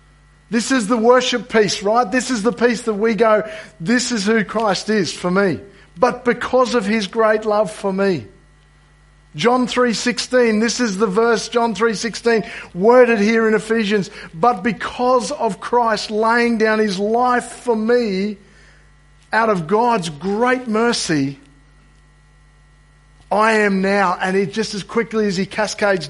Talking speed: 150 wpm